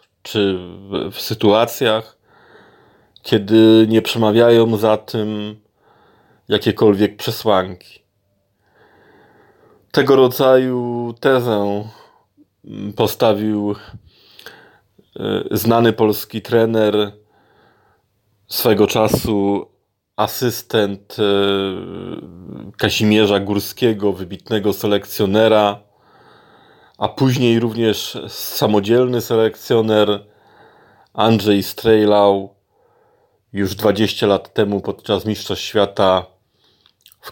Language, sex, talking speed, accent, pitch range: Polish, male, 65 wpm, native, 100-115 Hz